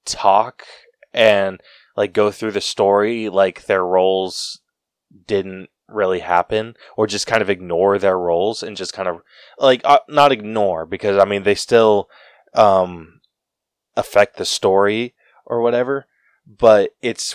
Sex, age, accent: male, 20-39, American